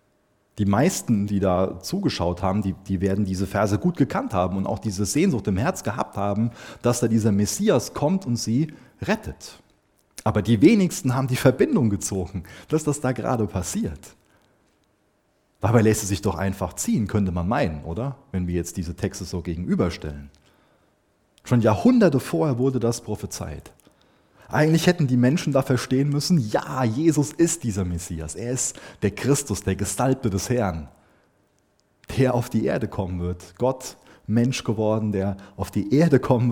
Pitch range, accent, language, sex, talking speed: 95-130 Hz, German, German, male, 165 wpm